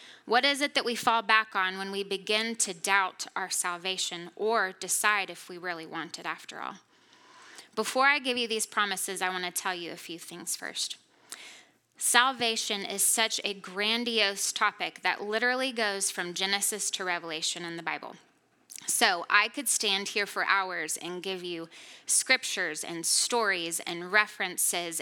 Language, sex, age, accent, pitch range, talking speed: English, female, 20-39, American, 180-225 Hz, 170 wpm